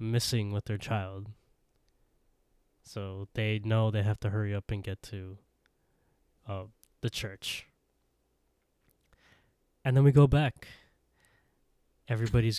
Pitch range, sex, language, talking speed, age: 100-115 Hz, male, English, 115 wpm, 10-29